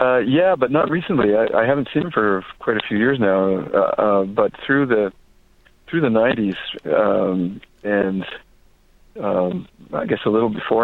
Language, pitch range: English, 95-110 Hz